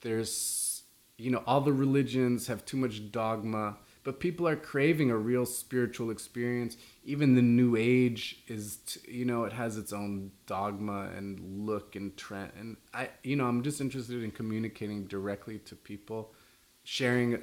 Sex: male